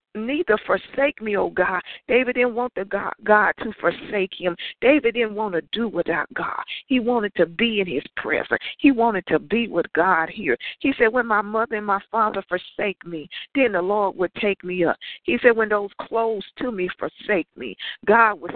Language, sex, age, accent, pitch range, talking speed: English, female, 50-69, American, 190-235 Hz, 205 wpm